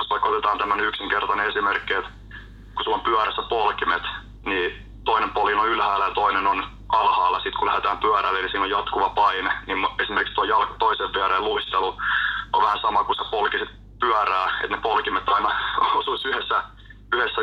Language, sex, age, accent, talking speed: Finnish, male, 30-49, native, 170 wpm